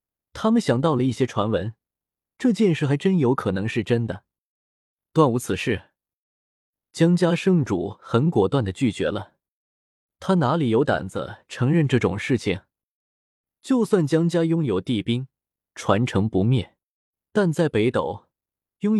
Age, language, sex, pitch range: 20-39, Chinese, male, 110-165 Hz